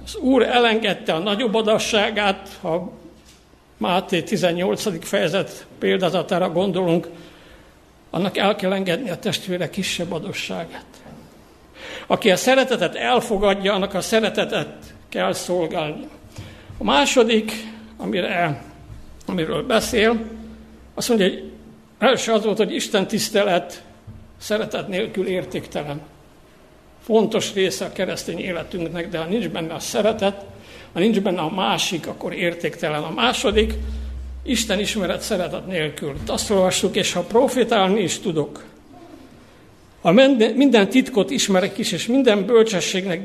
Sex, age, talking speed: male, 60-79, 120 wpm